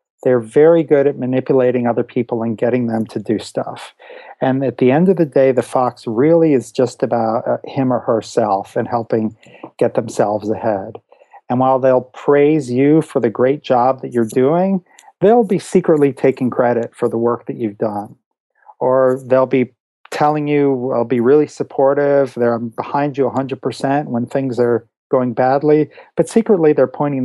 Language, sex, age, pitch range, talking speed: English, male, 40-59, 120-145 Hz, 175 wpm